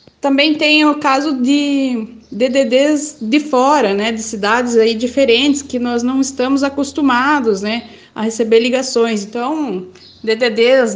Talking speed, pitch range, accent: 130 wpm, 225-285 Hz, Brazilian